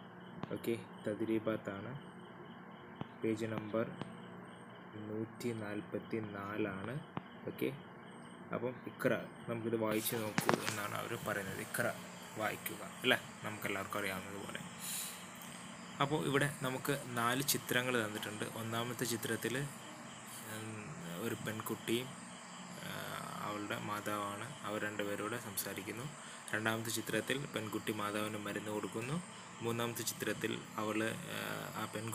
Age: 20-39